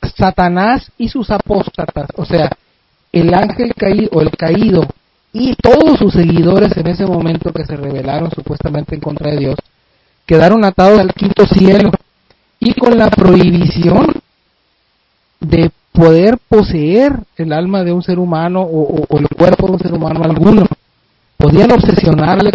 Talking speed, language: 150 wpm, Spanish